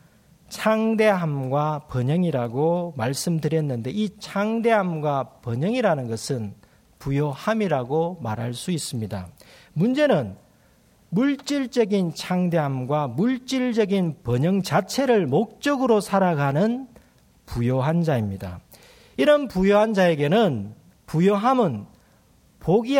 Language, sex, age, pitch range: Korean, male, 40-59, 130-215 Hz